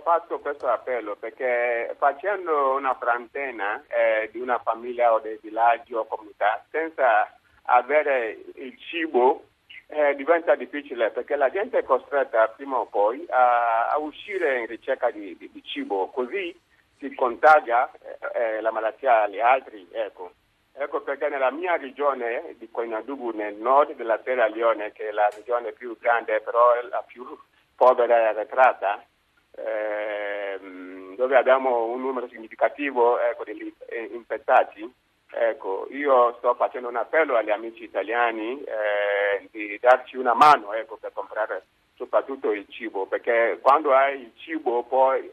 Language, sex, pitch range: Italian, male, 115-170 Hz